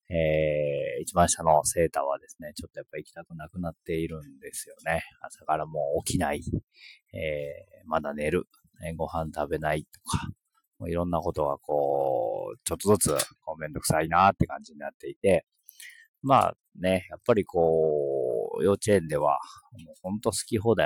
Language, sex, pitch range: Japanese, male, 80-115 Hz